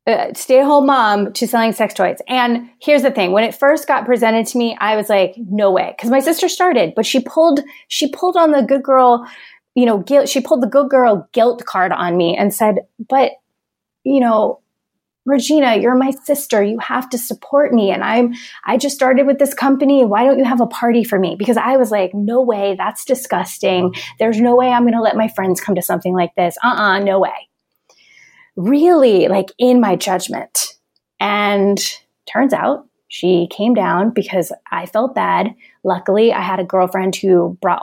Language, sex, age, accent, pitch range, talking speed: English, female, 30-49, American, 190-260 Hz, 205 wpm